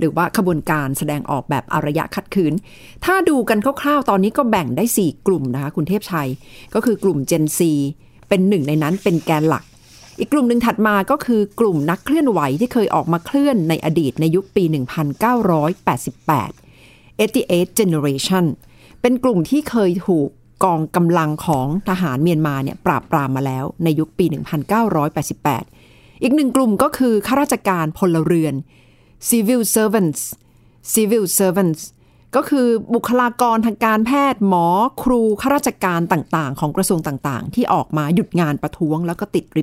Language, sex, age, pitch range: Thai, female, 60-79, 155-220 Hz